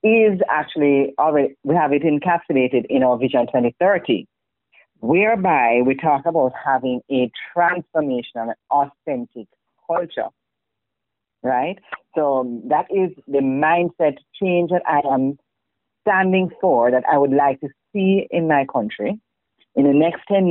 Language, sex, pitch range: English, female, 140-175 Hz